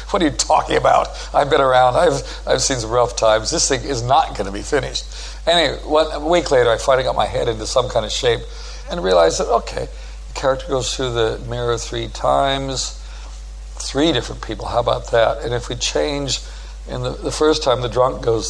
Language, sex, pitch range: English, male, 115-135 Hz